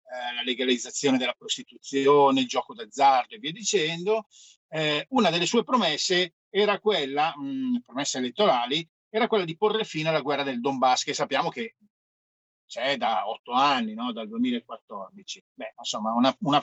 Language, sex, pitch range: Italian, male, 145-215 Hz